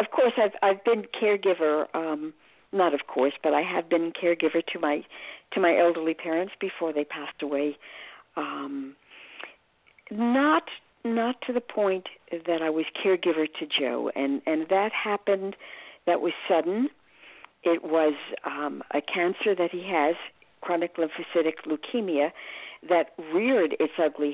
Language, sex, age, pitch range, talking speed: English, female, 50-69, 165-235 Hz, 145 wpm